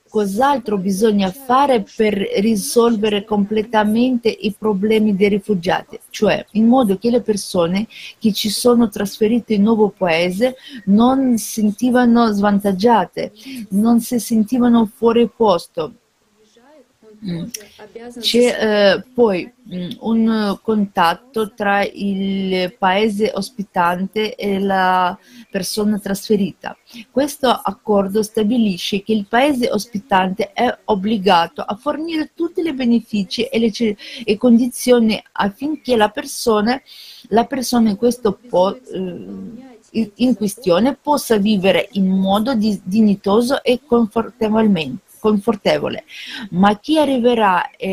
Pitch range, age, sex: 200-240 Hz, 40-59, female